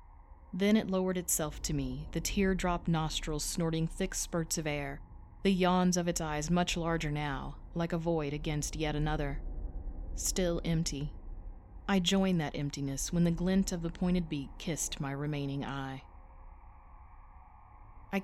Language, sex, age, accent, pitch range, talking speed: English, female, 30-49, American, 135-180 Hz, 150 wpm